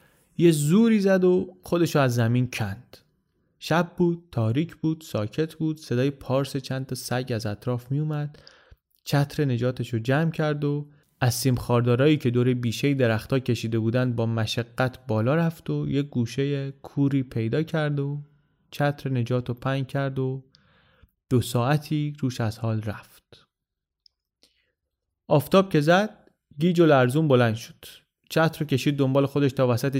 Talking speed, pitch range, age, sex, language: 145 wpm, 125-155 Hz, 30-49, male, Persian